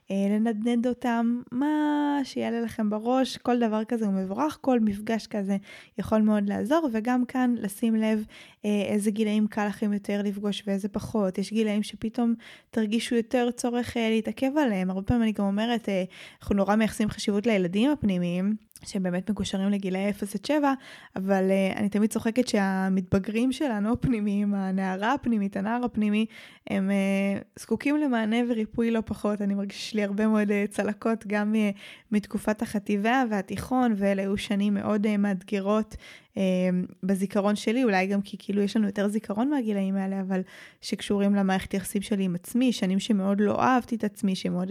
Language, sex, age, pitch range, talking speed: Hebrew, female, 10-29, 200-230 Hz, 150 wpm